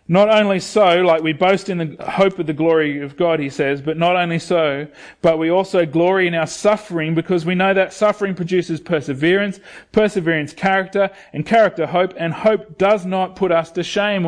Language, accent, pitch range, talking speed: English, Australian, 140-180 Hz, 200 wpm